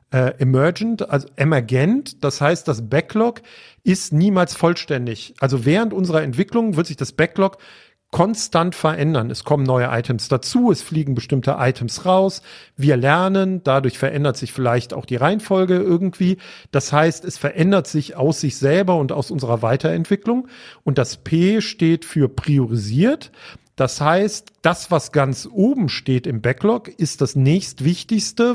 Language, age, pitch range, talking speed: German, 50-69, 130-170 Hz, 145 wpm